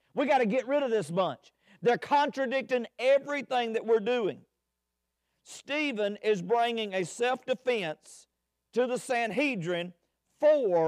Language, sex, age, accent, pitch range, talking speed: English, male, 50-69, American, 175-245 Hz, 125 wpm